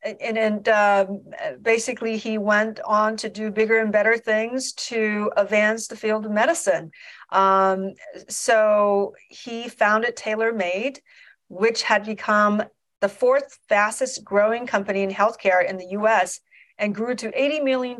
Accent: American